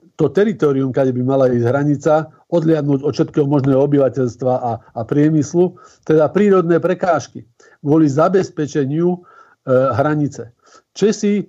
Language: Slovak